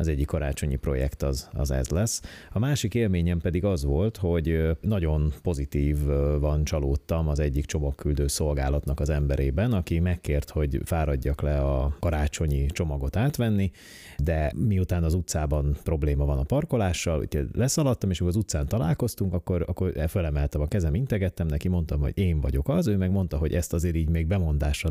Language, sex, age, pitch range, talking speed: Hungarian, male, 30-49, 70-90 Hz, 170 wpm